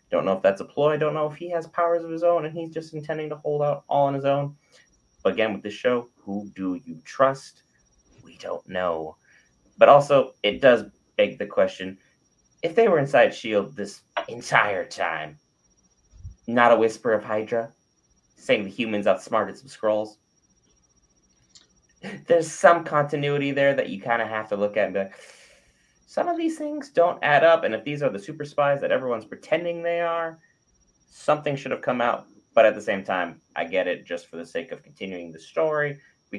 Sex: male